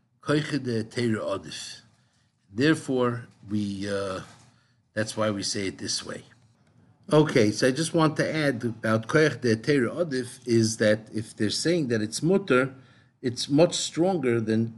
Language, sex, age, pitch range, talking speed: English, male, 60-79, 110-130 Hz, 120 wpm